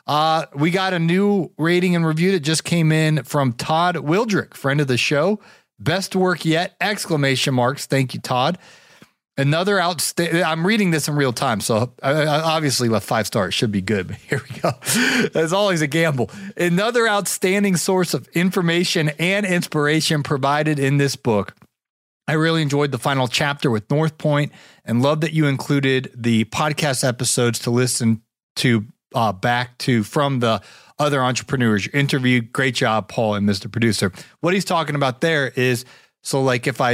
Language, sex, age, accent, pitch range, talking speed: English, male, 30-49, American, 120-160 Hz, 175 wpm